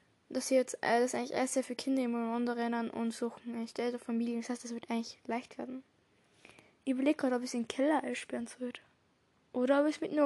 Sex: female